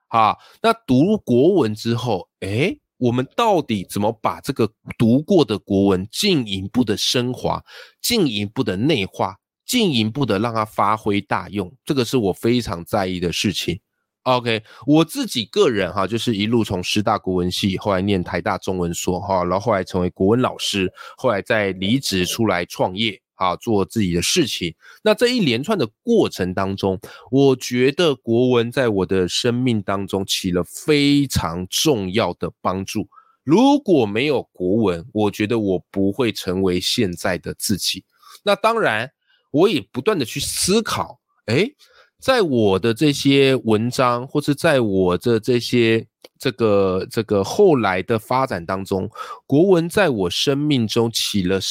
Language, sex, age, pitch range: Chinese, male, 20-39, 95-130 Hz